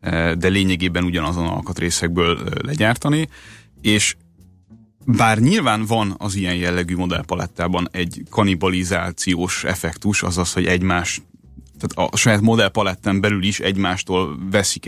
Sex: male